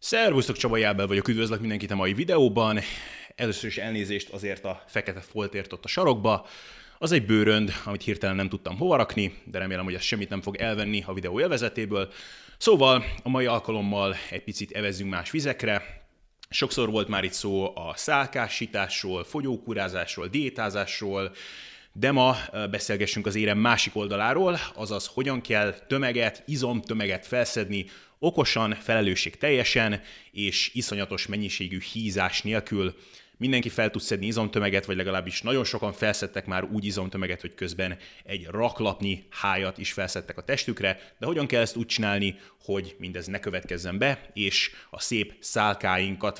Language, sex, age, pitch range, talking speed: Hungarian, male, 30-49, 95-115 Hz, 145 wpm